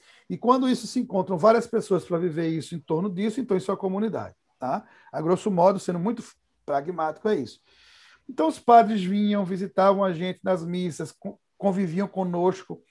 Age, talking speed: 60-79, 175 wpm